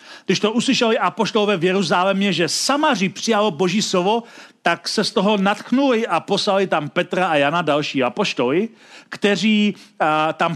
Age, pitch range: 40-59, 185-235 Hz